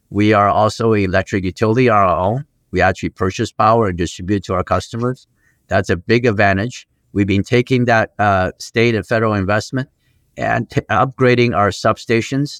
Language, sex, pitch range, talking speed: English, male, 100-130 Hz, 170 wpm